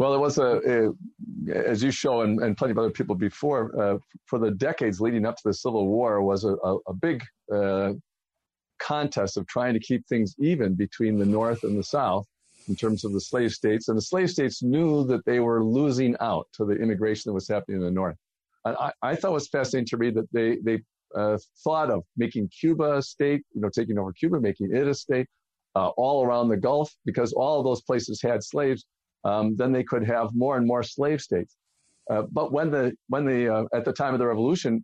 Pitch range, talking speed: 105-130 Hz, 220 wpm